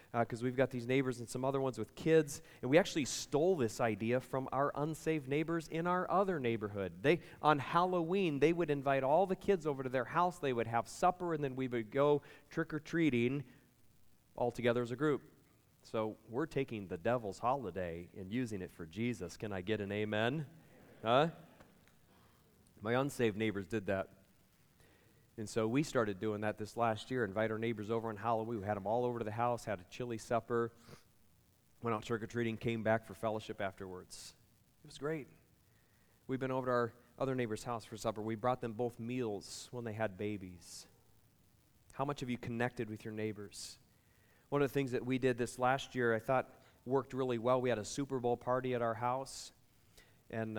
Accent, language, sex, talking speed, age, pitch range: American, English, male, 195 wpm, 30-49, 110-130 Hz